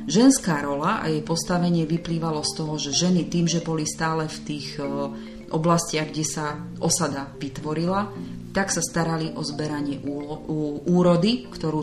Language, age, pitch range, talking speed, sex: Slovak, 30-49, 145-180 Hz, 140 wpm, female